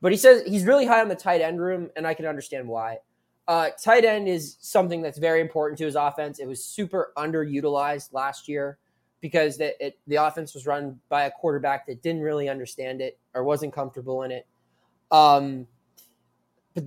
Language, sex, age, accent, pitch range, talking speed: English, male, 20-39, American, 140-185 Hz, 200 wpm